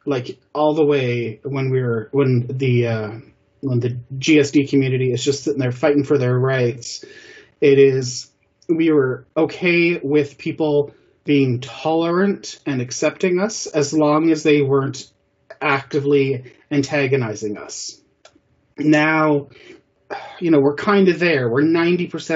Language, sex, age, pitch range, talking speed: English, male, 30-49, 130-155 Hz, 130 wpm